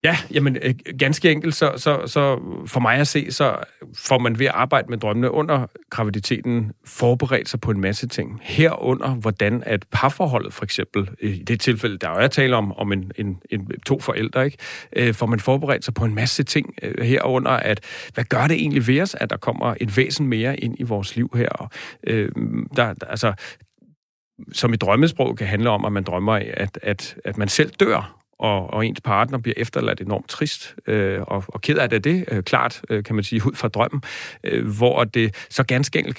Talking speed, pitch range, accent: 195 wpm, 110-130 Hz, native